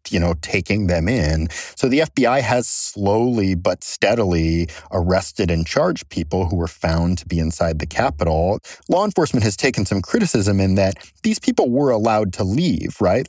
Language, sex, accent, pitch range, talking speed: English, male, American, 85-105 Hz, 175 wpm